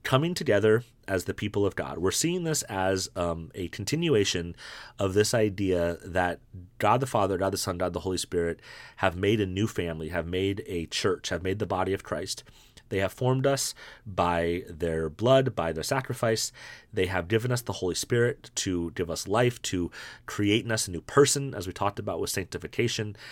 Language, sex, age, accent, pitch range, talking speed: English, male, 30-49, American, 90-110 Hz, 200 wpm